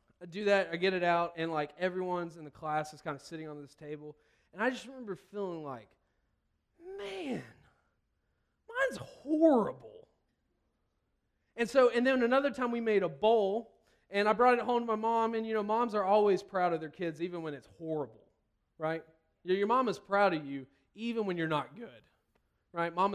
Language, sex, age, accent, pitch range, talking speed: English, male, 20-39, American, 150-205 Hz, 195 wpm